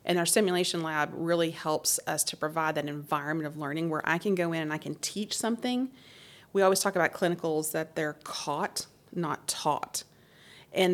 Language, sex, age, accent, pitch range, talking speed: English, female, 30-49, American, 160-195 Hz, 185 wpm